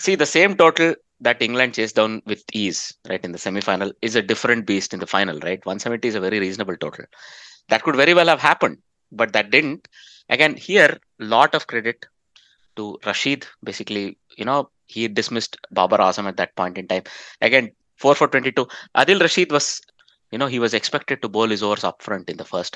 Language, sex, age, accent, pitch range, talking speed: English, male, 20-39, Indian, 110-150 Hz, 205 wpm